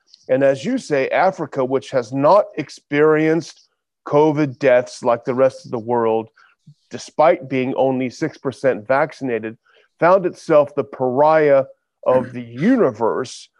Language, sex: English, male